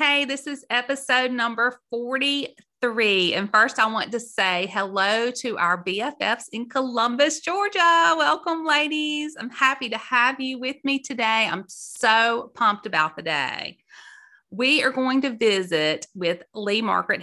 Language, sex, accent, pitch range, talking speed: English, female, American, 185-255 Hz, 150 wpm